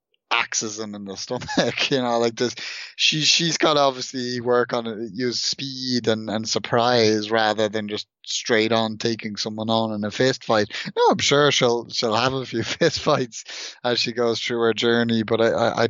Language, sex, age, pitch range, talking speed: English, male, 20-39, 110-130 Hz, 195 wpm